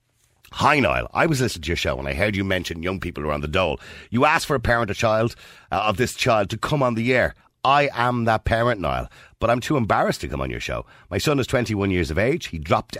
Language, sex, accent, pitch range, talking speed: English, male, Irish, 80-110 Hz, 275 wpm